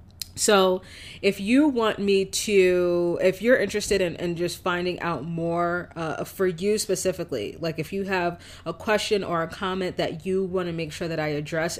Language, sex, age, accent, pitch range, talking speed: English, female, 30-49, American, 165-200 Hz, 190 wpm